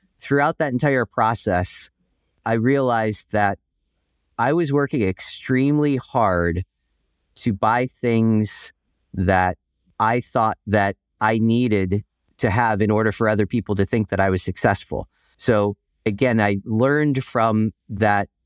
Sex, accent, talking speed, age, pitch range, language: male, American, 130 wpm, 30-49, 95-120 Hz, English